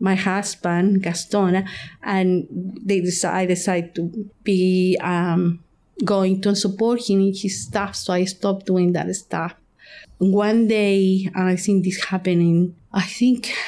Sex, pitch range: female, 180-195 Hz